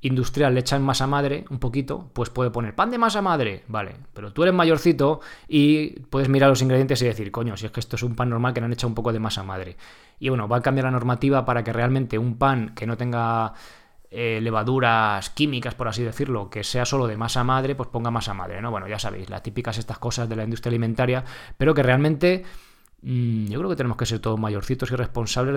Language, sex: Spanish, male